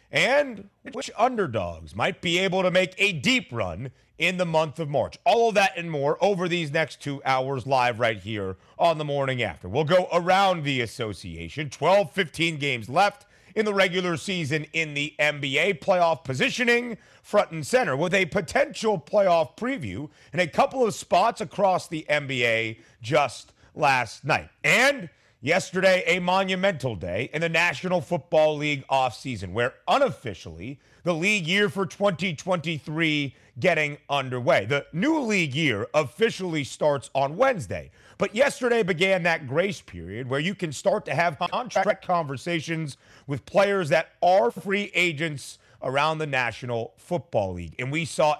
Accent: American